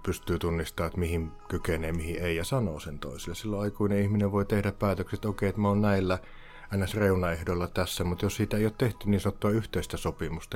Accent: native